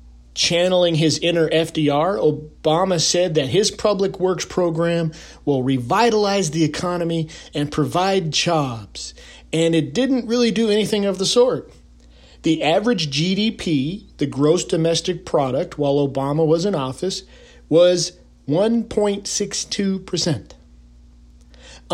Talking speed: 110 wpm